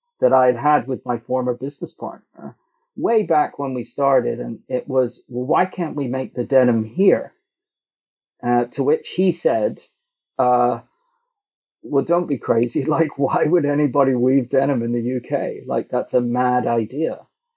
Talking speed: 165 wpm